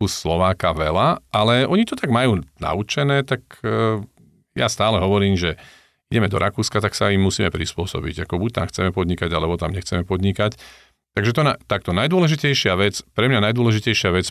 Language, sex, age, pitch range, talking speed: Slovak, male, 40-59, 85-105 Hz, 165 wpm